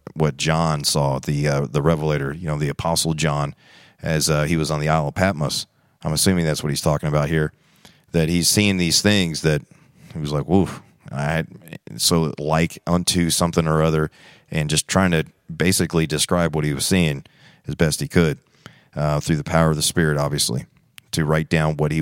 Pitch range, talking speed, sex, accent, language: 75-90 Hz, 200 wpm, male, American, English